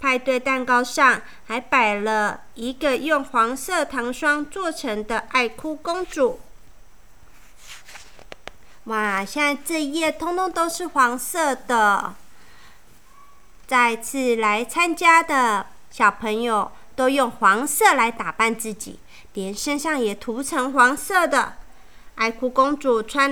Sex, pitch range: female, 240-365 Hz